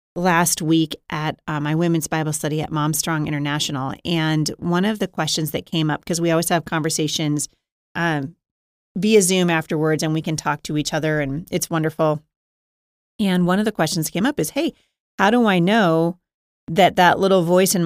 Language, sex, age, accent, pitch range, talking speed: English, female, 30-49, American, 160-195 Hz, 190 wpm